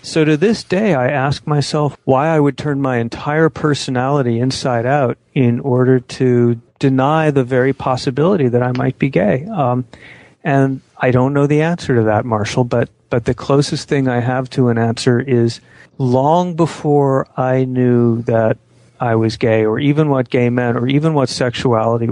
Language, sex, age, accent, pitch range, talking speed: English, male, 40-59, American, 120-145 Hz, 180 wpm